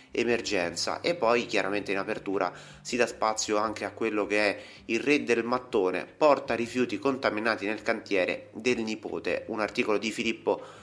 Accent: native